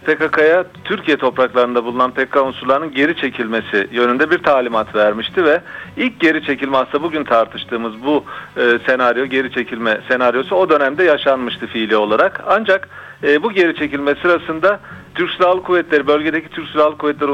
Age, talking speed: 40-59, 140 wpm